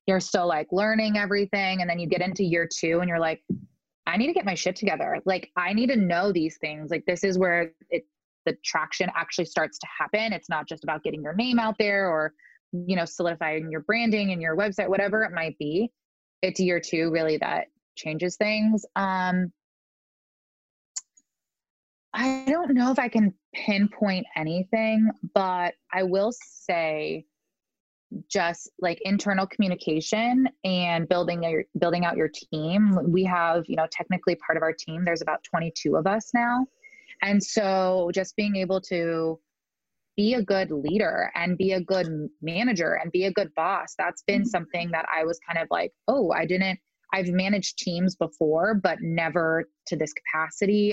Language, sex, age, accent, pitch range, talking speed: English, female, 20-39, American, 165-210 Hz, 175 wpm